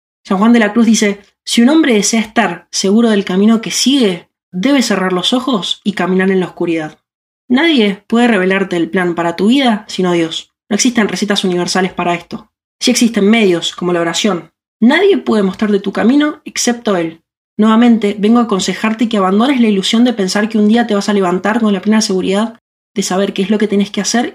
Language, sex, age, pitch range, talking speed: Spanish, female, 20-39, 185-230 Hz, 205 wpm